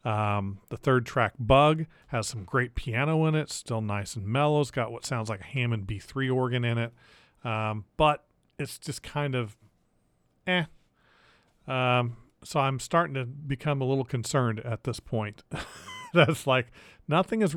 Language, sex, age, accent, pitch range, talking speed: English, male, 40-59, American, 115-150 Hz, 165 wpm